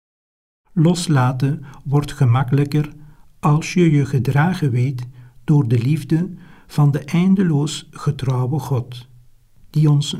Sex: male